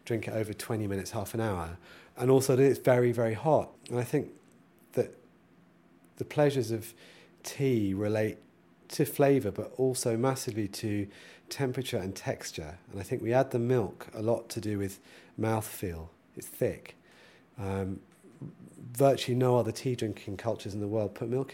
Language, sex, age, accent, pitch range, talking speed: English, male, 40-59, British, 100-130 Hz, 160 wpm